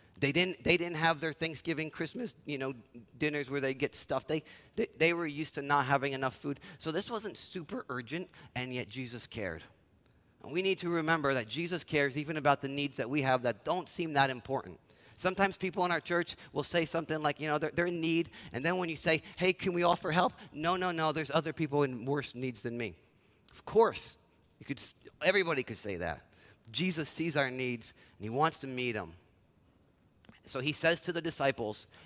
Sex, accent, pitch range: male, American, 130-170 Hz